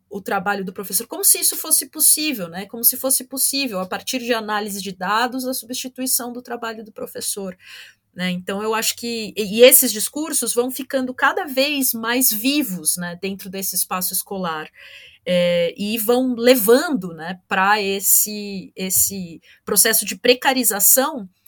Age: 30-49